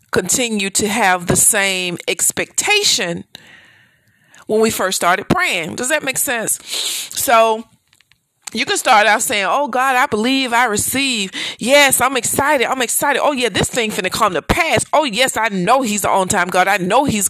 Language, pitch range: English, 195-270 Hz